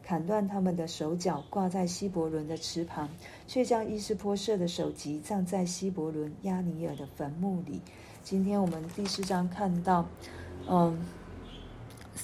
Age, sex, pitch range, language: 40-59, female, 155-190 Hz, Chinese